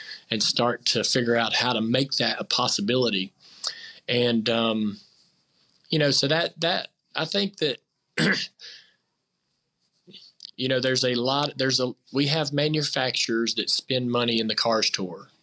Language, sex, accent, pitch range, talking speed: English, male, American, 115-135 Hz, 150 wpm